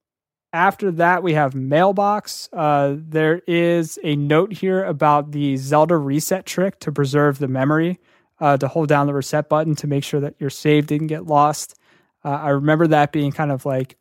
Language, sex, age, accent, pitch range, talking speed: English, male, 20-39, American, 140-160 Hz, 190 wpm